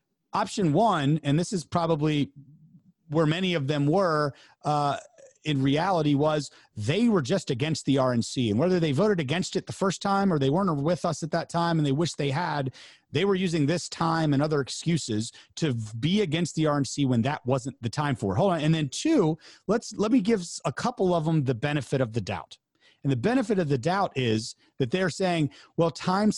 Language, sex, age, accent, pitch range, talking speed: English, male, 30-49, American, 140-185 Hz, 210 wpm